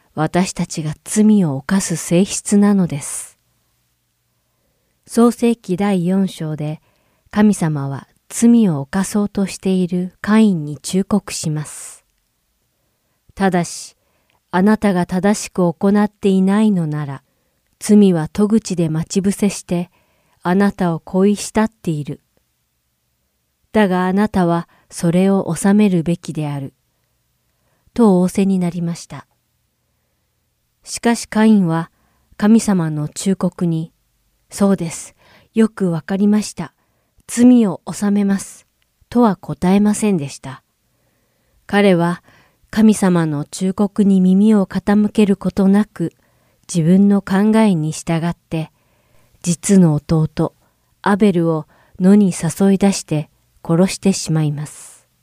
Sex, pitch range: female, 160-200 Hz